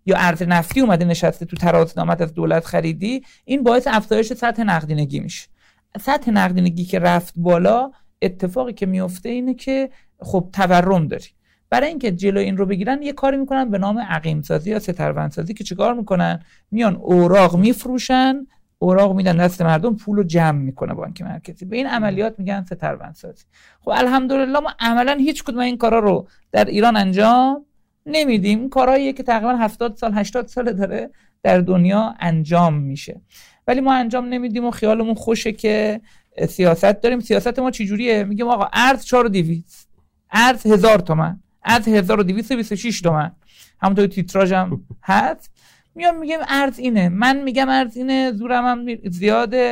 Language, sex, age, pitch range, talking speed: Persian, male, 50-69, 185-245 Hz, 150 wpm